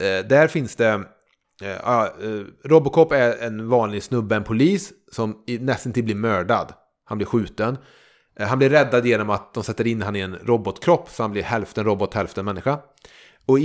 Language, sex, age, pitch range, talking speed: Swedish, male, 30-49, 105-130 Hz, 175 wpm